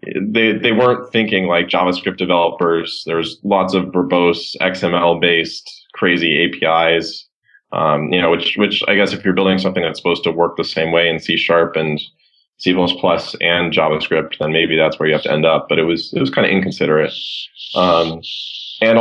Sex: male